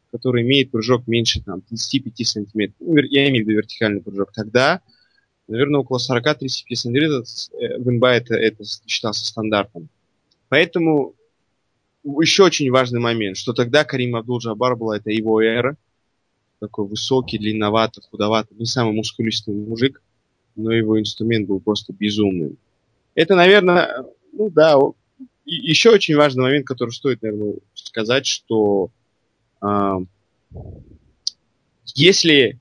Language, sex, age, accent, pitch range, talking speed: Russian, male, 20-39, native, 105-135 Hz, 115 wpm